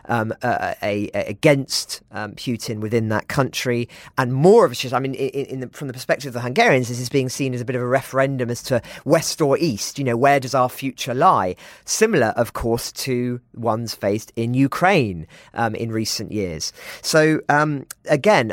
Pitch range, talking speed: 110-135 Hz, 205 wpm